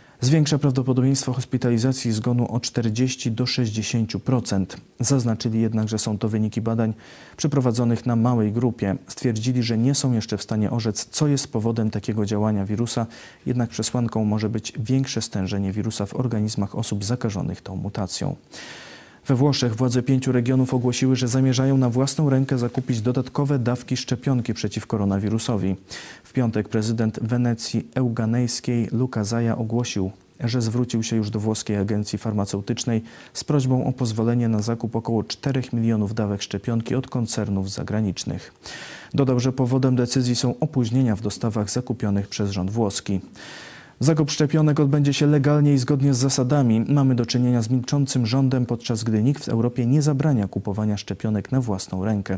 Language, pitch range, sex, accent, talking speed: Polish, 105-130 Hz, male, native, 150 wpm